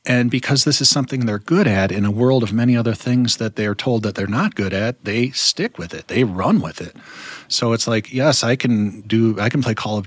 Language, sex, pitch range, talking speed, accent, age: English, male, 100-125 Hz, 255 wpm, American, 40-59